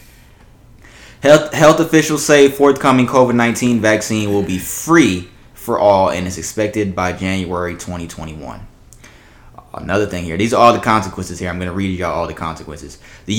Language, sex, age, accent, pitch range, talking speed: English, male, 20-39, American, 95-130 Hz, 160 wpm